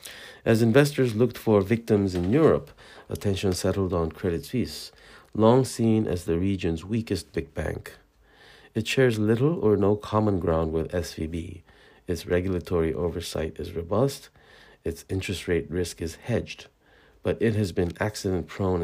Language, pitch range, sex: Korean, 85-105 Hz, male